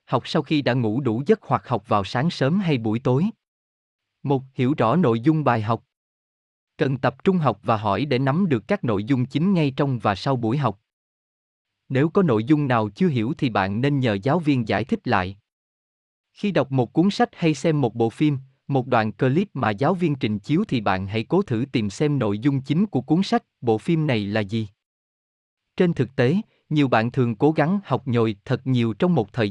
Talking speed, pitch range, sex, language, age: 220 wpm, 115-155 Hz, male, Vietnamese, 20-39